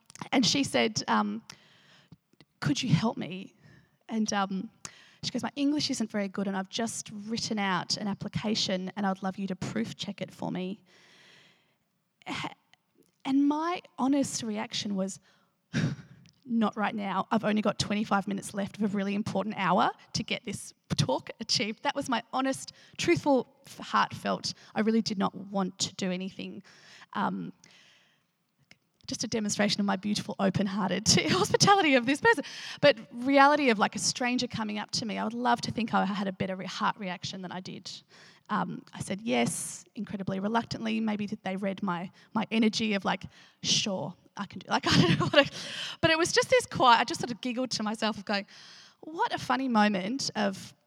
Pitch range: 190-230 Hz